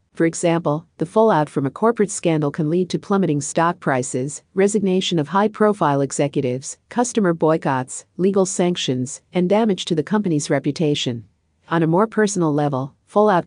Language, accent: English, American